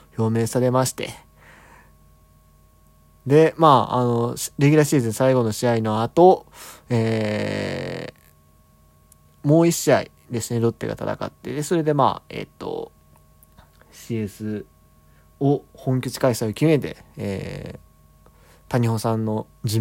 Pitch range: 100-130 Hz